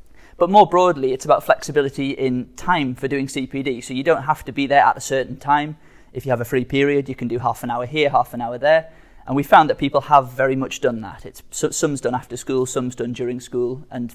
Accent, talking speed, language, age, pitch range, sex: British, 250 wpm, English, 30-49, 125-155 Hz, male